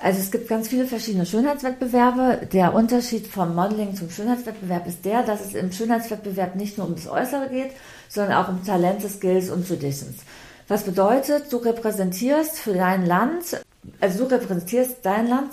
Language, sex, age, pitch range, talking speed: German, female, 40-59, 180-245 Hz, 170 wpm